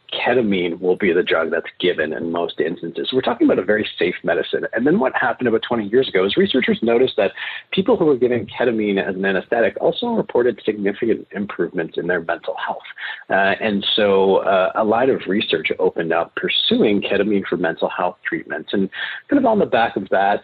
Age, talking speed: 40-59, 205 wpm